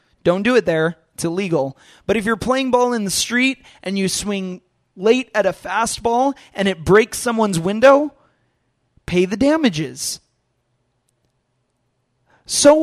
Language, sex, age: English, male, 20-39